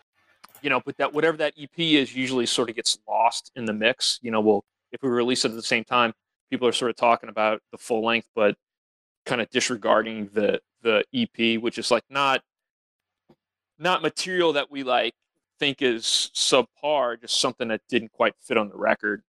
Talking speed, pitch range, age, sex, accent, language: 200 wpm, 110-145 Hz, 30-49, male, American, English